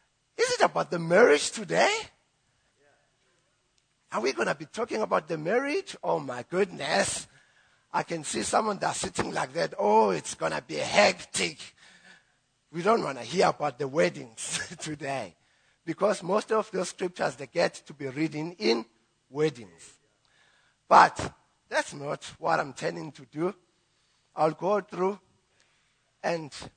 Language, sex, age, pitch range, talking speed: English, male, 50-69, 140-190 Hz, 145 wpm